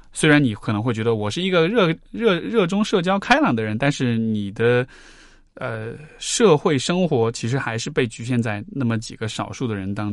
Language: Chinese